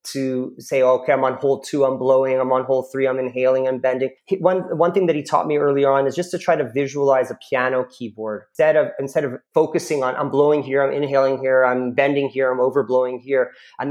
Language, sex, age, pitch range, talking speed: English, male, 30-49, 135-165 Hz, 235 wpm